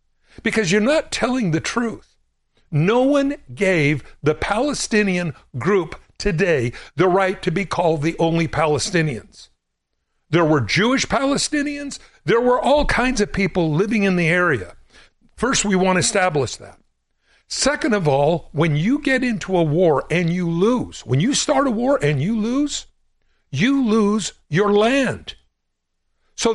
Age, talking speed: 60-79, 150 wpm